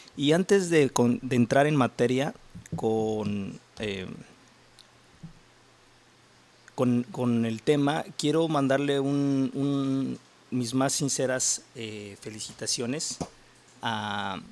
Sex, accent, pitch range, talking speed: male, Mexican, 115-130 Hz, 95 wpm